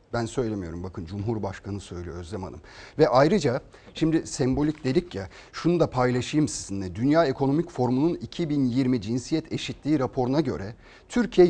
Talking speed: 135 wpm